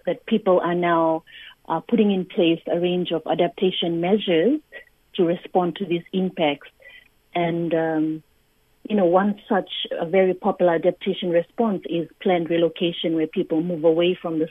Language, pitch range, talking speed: English, 165-195 Hz, 155 wpm